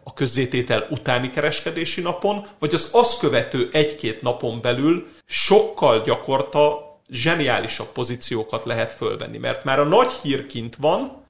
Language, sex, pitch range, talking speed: Hungarian, male, 120-155 Hz, 130 wpm